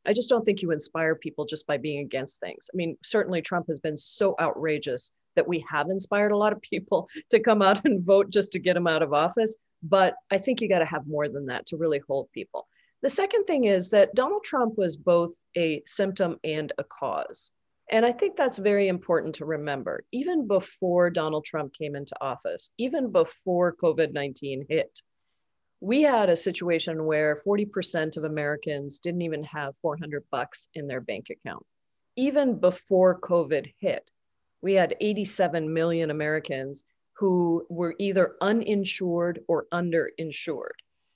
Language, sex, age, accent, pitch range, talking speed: English, female, 40-59, American, 155-210 Hz, 175 wpm